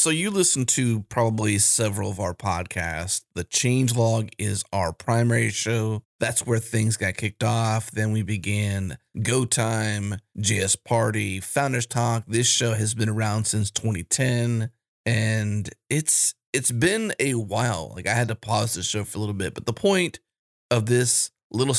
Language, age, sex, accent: English, 30-49, male, American